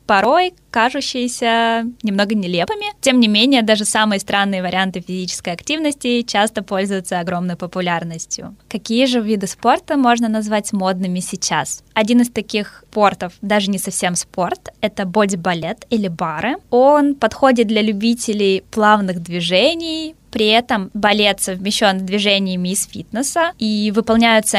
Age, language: 20-39, Russian